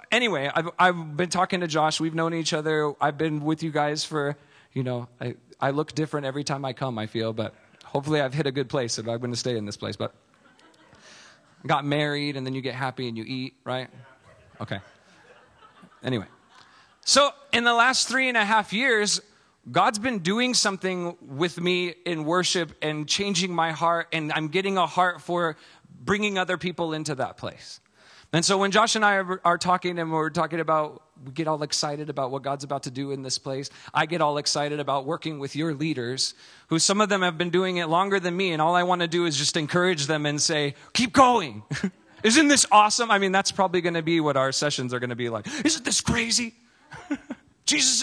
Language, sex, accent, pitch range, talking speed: English, male, American, 145-190 Hz, 215 wpm